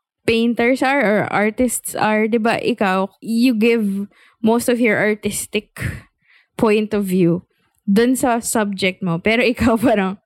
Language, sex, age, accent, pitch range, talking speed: English, female, 20-39, Filipino, 205-275 Hz, 135 wpm